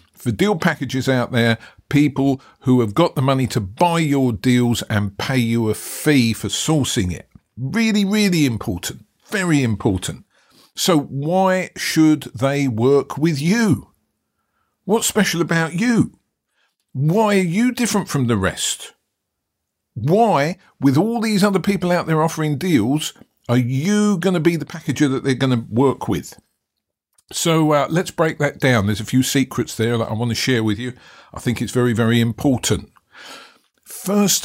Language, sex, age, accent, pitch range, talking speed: English, male, 50-69, British, 115-170 Hz, 160 wpm